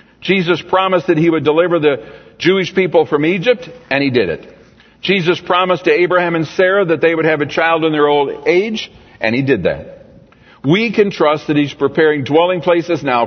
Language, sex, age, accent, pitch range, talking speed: English, male, 60-79, American, 125-170 Hz, 200 wpm